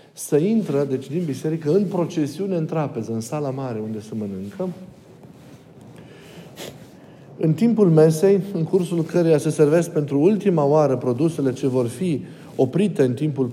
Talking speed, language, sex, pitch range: 145 wpm, Romanian, male, 135-175 Hz